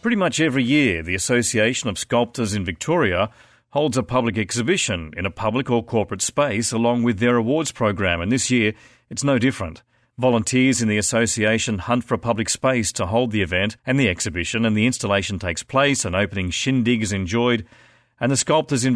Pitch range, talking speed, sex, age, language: 105-130 Hz, 195 wpm, male, 40-59, English